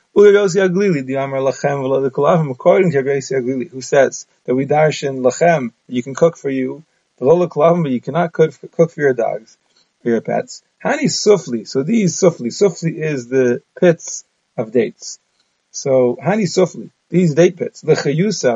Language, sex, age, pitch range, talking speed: English, male, 30-49, 130-170 Hz, 145 wpm